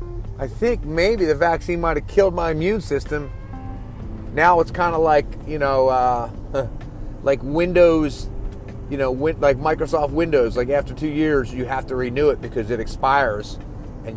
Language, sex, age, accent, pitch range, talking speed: English, male, 30-49, American, 105-145 Hz, 165 wpm